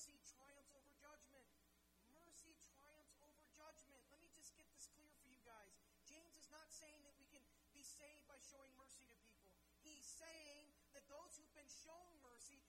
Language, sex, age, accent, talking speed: English, male, 40-59, American, 185 wpm